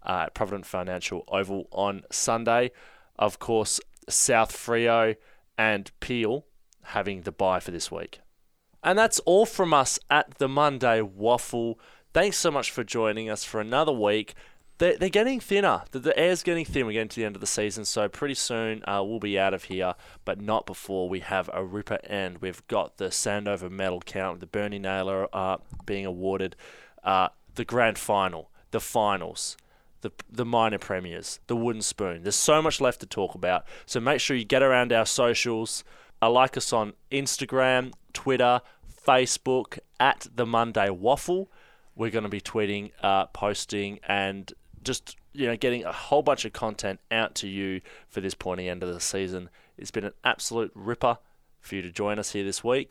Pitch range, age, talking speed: 95-125 Hz, 20-39, 185 wpm